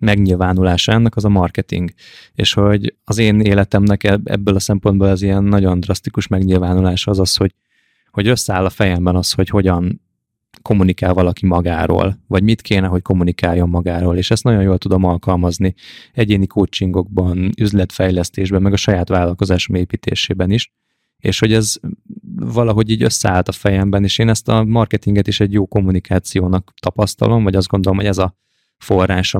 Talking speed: 155 wpm